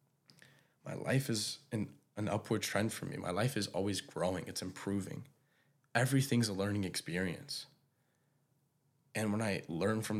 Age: 10-29